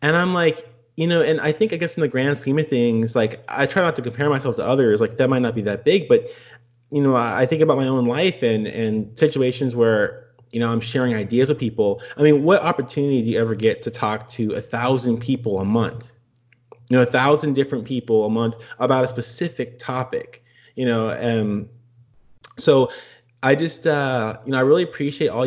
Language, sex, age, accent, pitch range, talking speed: English, male, 30-49, American, 115-135 Hz, 220 wpm